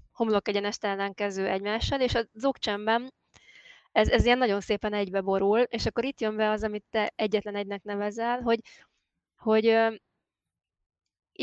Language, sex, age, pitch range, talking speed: Hungarian, female, 20-39, 205-225 Hz, 145 wpm